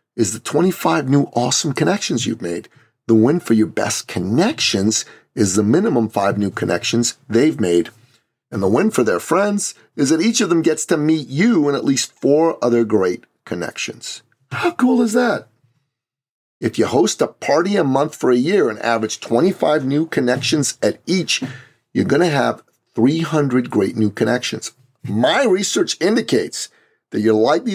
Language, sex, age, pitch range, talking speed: English, male, 40-59, 110-140 Hz, 170 wpm